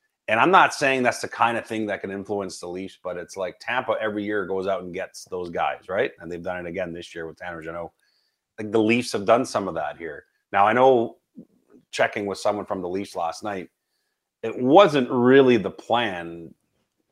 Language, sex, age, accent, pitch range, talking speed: English, male, 30-49, American, 90-115 Hz, 215 wpm